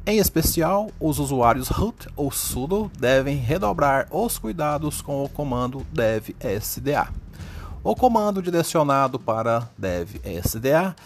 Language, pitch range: Portuguese, 95-160 Hz